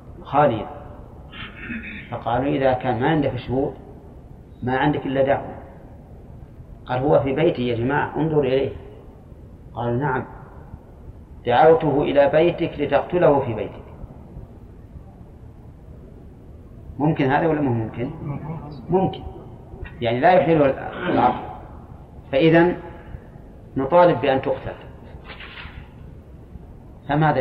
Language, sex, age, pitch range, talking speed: Arabic, male, 40-59, 120-145 Hz, 90 wpm